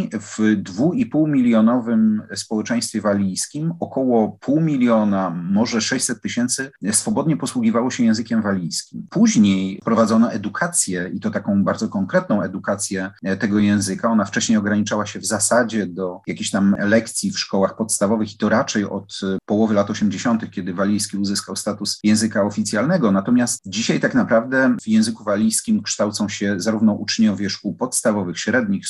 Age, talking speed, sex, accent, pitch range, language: 40-59, 135 wpm, male, native, 105-175 Hz, Polish